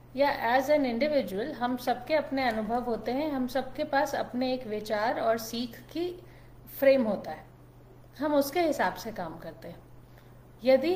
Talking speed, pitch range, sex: 165 wpm, 200-270 Hz, female